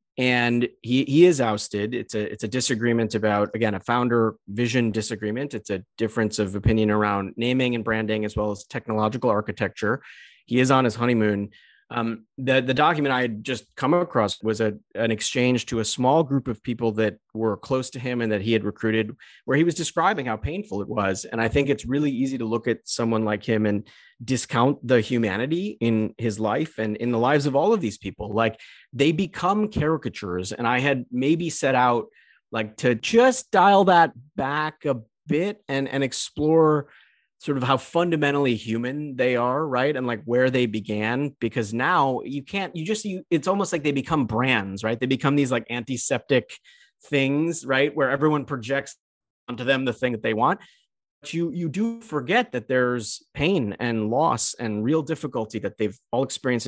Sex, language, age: male, English, 30-49